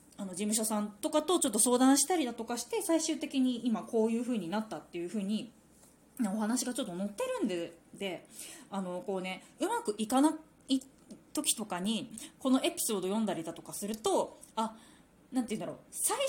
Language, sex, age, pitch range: Japanese, female, 20-39, 200-275 Hz